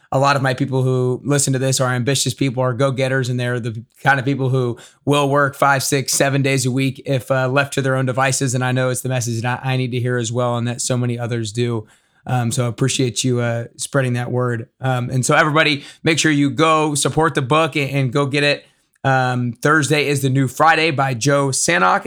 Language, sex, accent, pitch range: English, male, American, 125-145 Hz